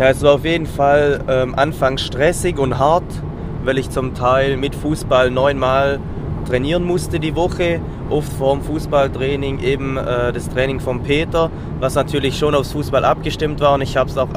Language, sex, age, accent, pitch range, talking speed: German, male, 20-39, German, 125-140 Hz, 185 wpm